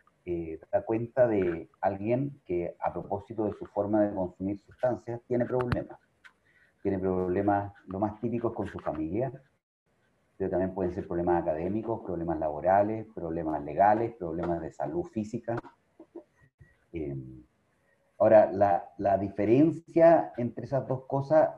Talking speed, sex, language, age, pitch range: 130 wpm, male, Spanish, 40-59, 95-115 Hz